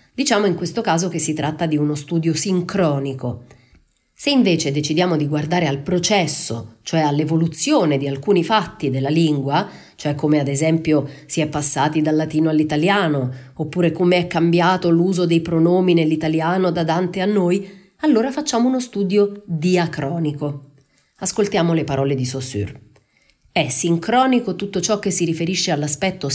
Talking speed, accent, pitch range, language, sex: 150 wpm, native, 140-190 Hz, Italian, female